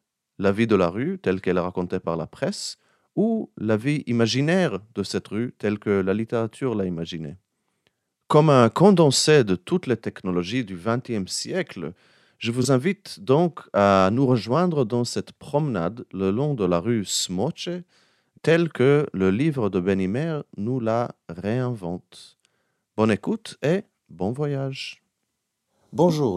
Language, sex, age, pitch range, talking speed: French, male, 40-59, 95-135 Hz, 150 wpm